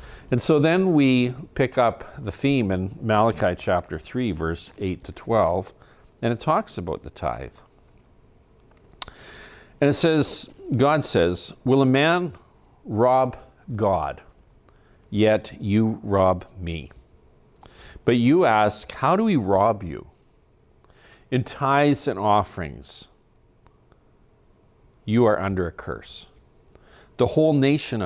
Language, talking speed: English, 120 wpm